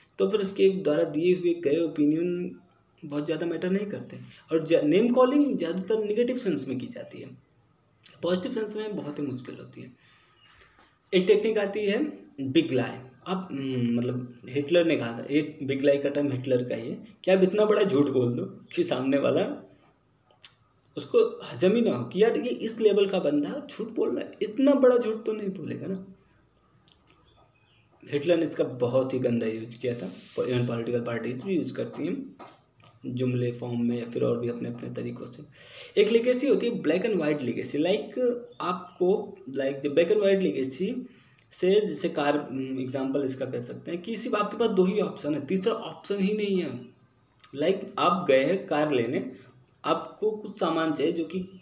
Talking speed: 180 wpm